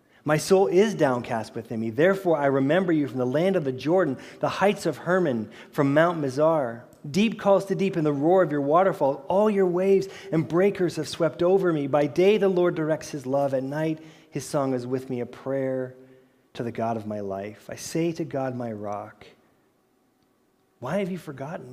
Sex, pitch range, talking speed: male, 125-170 Hz, 205 wpm